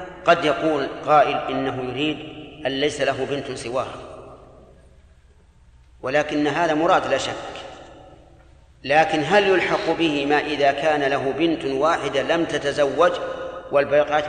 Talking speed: 120 wpm